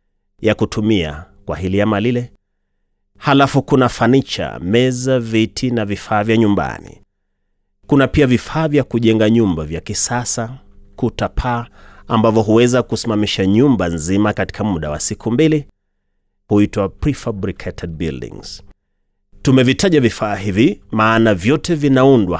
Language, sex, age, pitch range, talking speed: Swahili, male, 30-49, 90-130 Hz, 115 wpm